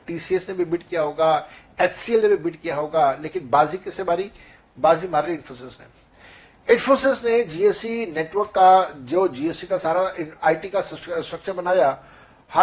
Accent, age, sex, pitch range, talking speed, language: native, 60-79, male, 160-190 Hz, 140 wpm, Hindi